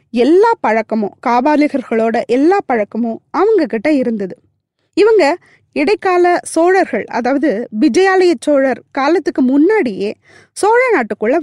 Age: 20-39